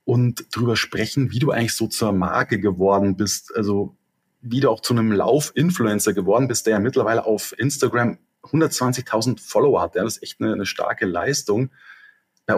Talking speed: 175 wpm